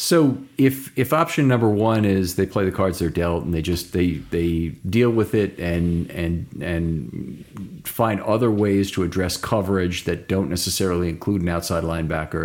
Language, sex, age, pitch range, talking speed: English, male, 40-59, 90-110 Hz, 180 wpm